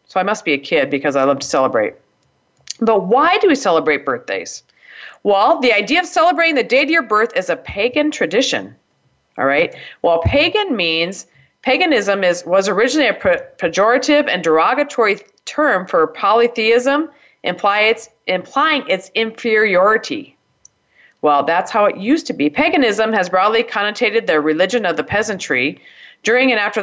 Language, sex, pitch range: English, female, 175-260 Hz